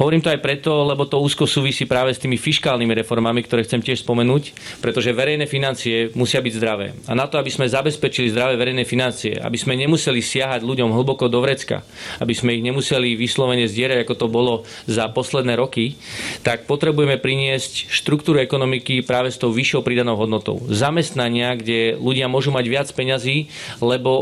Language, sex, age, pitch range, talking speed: Slovak, male, 30-49, 120-140 Hz, 175 wpm